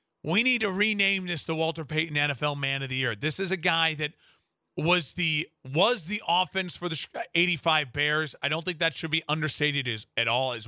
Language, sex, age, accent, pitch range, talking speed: English, male, 30-49, American, 155-195 Hz, 215 wpm